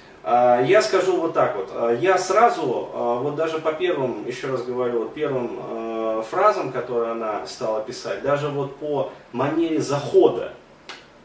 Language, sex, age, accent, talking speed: Russian, male, 30-49, native, 135 wpm